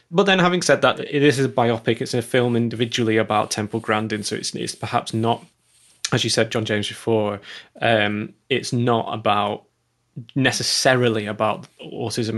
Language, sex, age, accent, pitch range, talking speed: English, male, 20-39, British, 105-120 Hz, 165 wpm